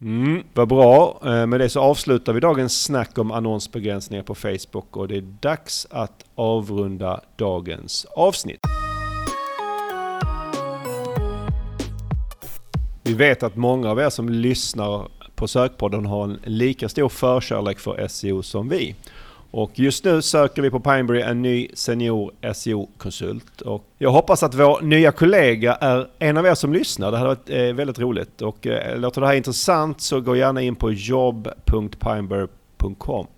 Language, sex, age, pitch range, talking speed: Swedish, male, 40-59, 105-135 Hz, 145 wpm